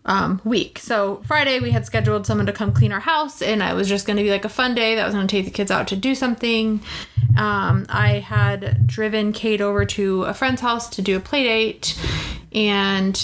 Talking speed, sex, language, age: 230 wpm, female, English, 20-39